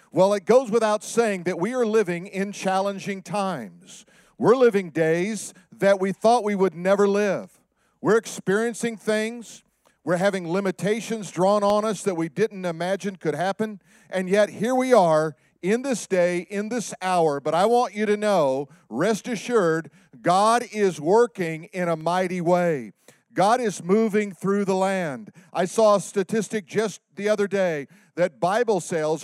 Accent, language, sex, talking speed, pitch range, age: American, English, male, 165 wpm, 180-220 Hz, 50-69